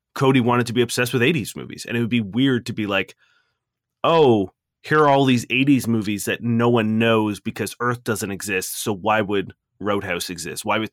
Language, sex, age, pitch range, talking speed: English, male, 30-49, 105-125 Hz, 210 wpm